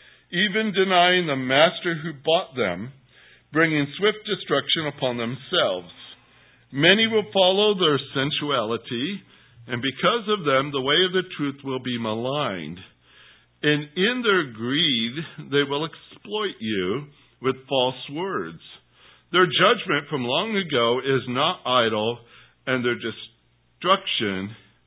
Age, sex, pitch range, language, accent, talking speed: 60-79, male, 110-155 Hz, English, American, 125 wpm